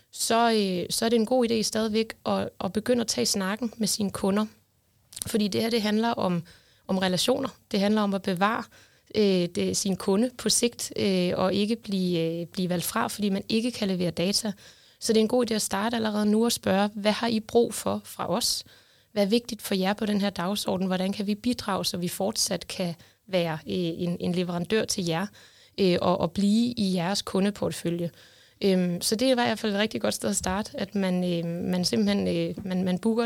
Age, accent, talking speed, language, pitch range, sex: 20-39, native, 210 wpm, Danish, 185-220 Hz, female